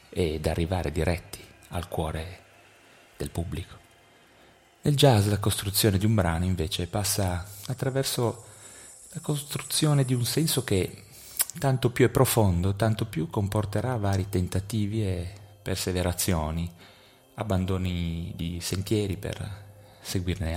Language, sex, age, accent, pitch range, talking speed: Italian, male, 30-49, native, 85-105 Hz, 115 wpm